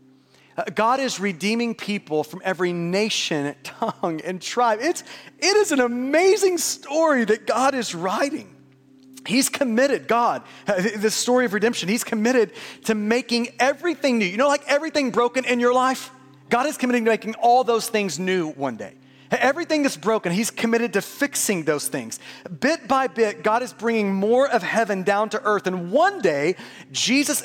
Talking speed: 170 wpm